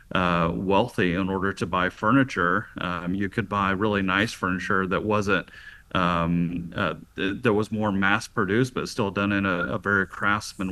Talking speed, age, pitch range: 175 wpm, 40-59, 95-120 Hz